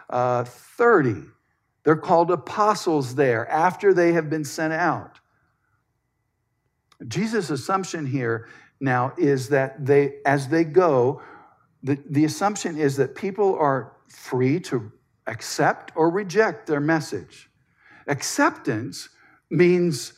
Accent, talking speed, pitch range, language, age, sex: American, 115 wpm, 145-215 Hz, English, 60-79, male